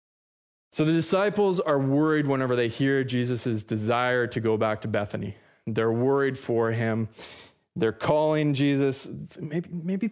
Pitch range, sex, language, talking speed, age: 115-150 Hz, male, English, 140 wpm, 20-39